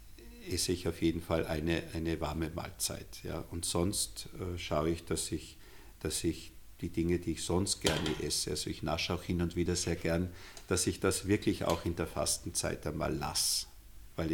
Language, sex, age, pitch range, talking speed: German, male, 50-69, 85-100 Hz, 195 wpm